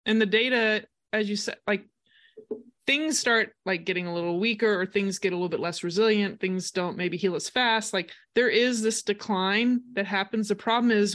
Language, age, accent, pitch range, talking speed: English, 20-39, American, 185-225 Hz, 205 wpm